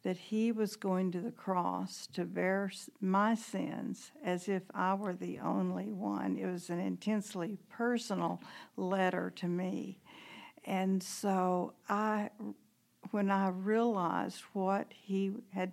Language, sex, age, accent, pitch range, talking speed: English, female, 60-79, American, 185-210 Hz, 135 wpm